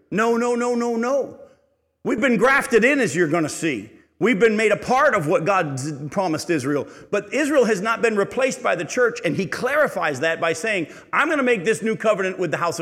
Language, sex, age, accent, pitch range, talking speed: English, male, 50-69, American, 135-200 Hz, 230 wpm